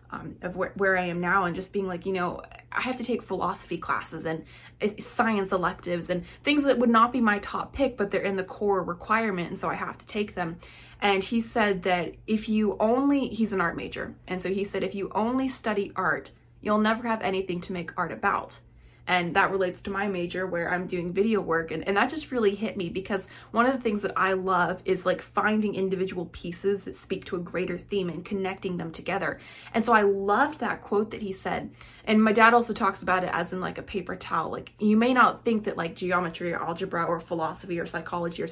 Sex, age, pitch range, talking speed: female, 20-39, 175-215 Hz, 235 wpm